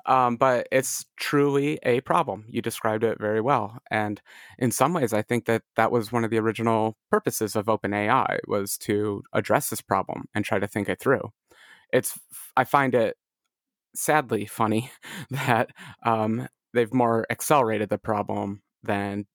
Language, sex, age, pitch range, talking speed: English, male, 30-49, 105-130 Hz, 165 wpm